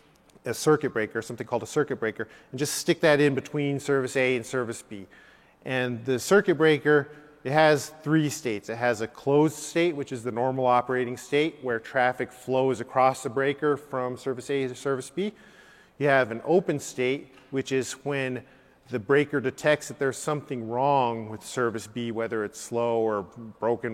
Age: 40-59